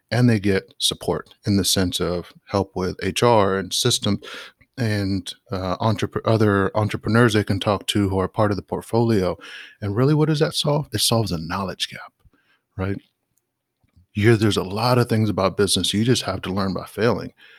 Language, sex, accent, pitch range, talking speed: English, male, American, 95-115 Hz, 180 wpm